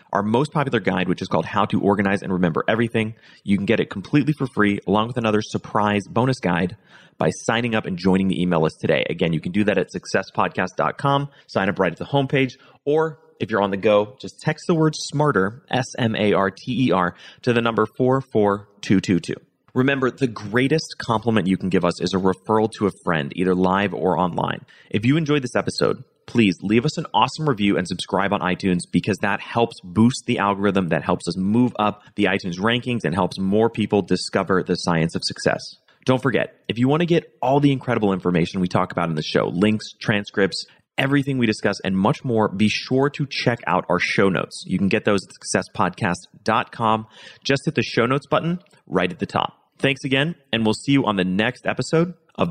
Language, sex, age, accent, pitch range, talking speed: English, male, 30-49, American, 95-130 Hz, 205 wpm